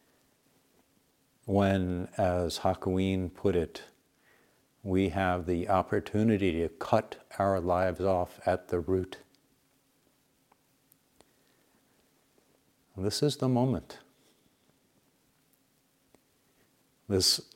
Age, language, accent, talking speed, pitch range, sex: 60-79, English, American, 75 wpm, 95-135 Hz, male